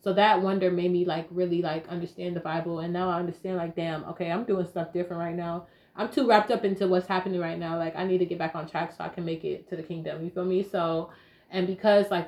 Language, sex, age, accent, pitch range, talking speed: English, female, 20-39, American, 170-190 Hz, 275 wpm